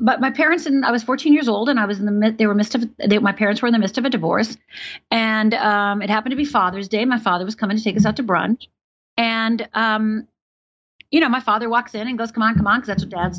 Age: 40-59